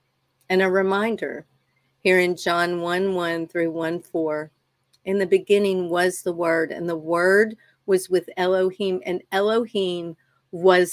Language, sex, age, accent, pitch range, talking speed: English, female, 50-69, American, 165-200 Hz, 145 wpm